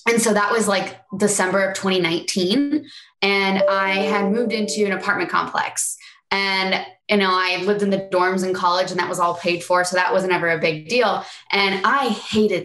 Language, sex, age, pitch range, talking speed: English, female, 20-39, 180-220 Hz, 205 wpm